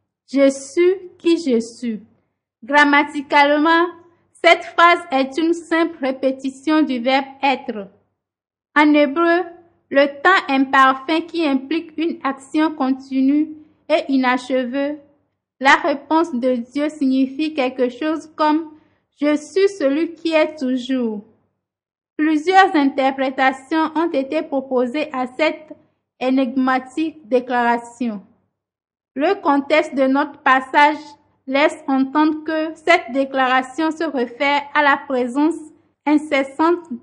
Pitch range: 265-315 Hz